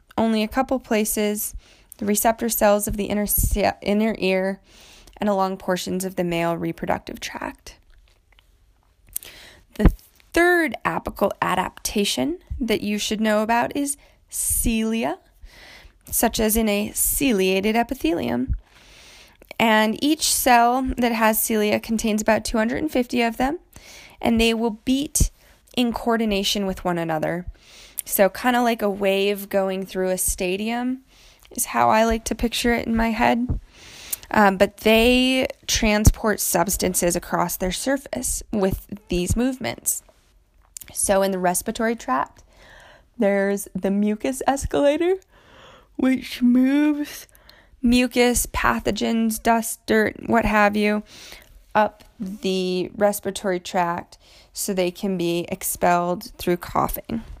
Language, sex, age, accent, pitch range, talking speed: English, female, 20-39, American, 190-240 Hz, 120 wpm